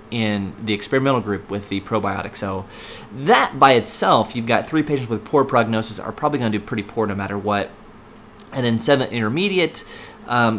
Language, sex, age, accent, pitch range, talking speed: English, male, 30-49, American, 105-135 Hz, 185 wpm